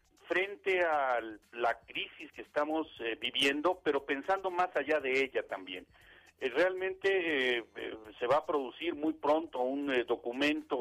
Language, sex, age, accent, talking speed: Spanish, male, 50-69, Mexican, 155 wpm